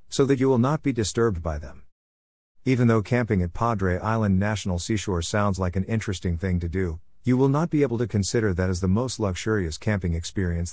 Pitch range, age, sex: 85-110 Hz, 50-69, male